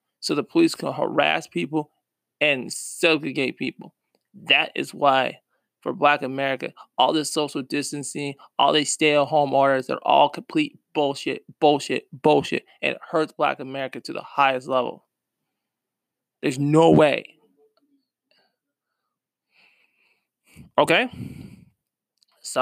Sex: male